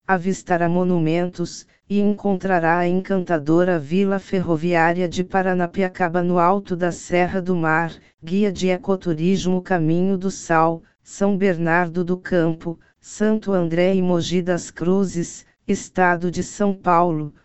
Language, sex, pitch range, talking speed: Portuguese, female, 170-190 Hz, 125 wpm